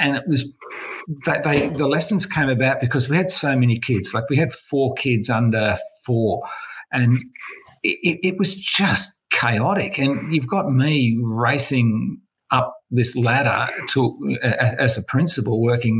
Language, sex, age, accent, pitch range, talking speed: English, male, 50-69, Australian, 115-150 Hz, 145 wpm